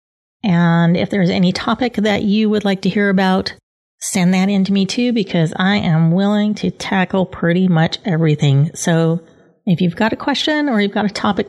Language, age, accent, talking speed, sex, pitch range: English, 40-59, American, 200 wpm, female, 165-205 Hz